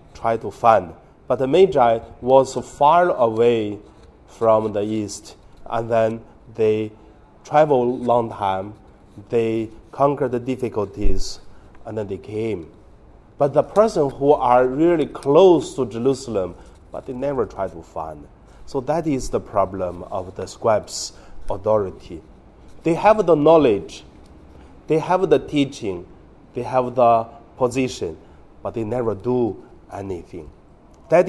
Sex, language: male, Chinese